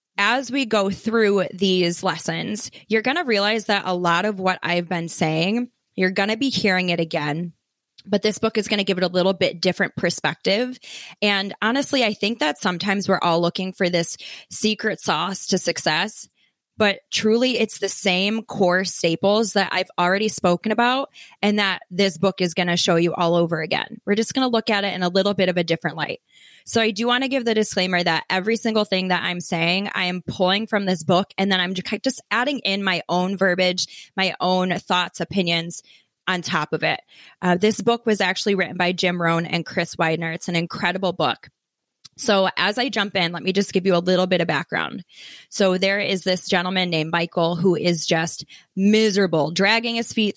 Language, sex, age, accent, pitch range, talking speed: English, female, 20-39, American, 175-205 Hz, 210 wpm